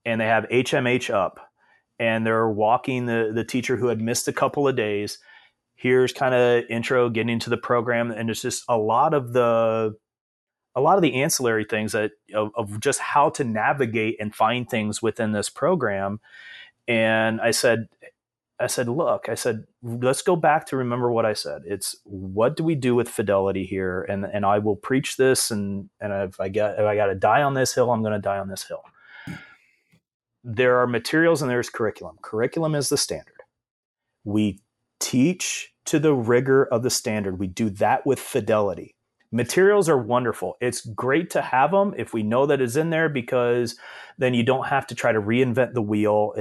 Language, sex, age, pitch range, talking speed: English, male, 30-49, 110-130 Hz, 195 wpm